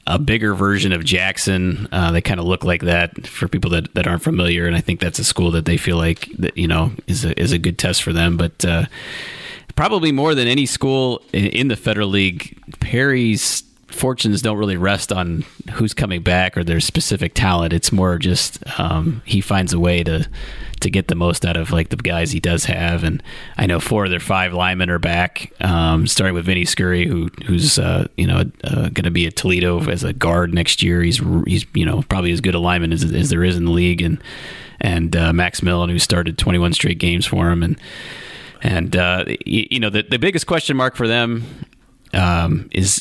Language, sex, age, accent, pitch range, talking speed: English, male, 30-49, American, 85-100 Hz, 225 wpm